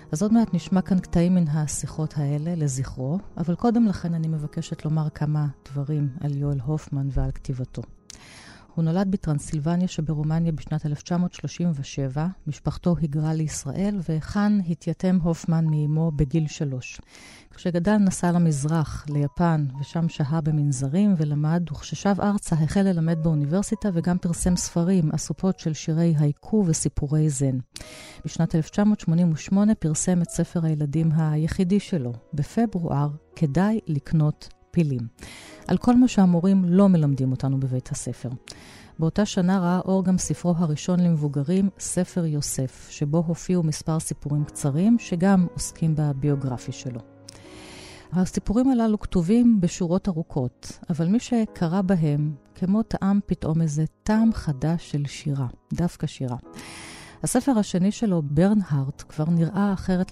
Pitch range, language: 145-180 Hz, Hebrew